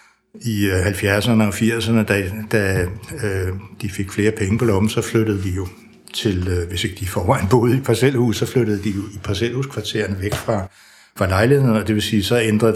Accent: native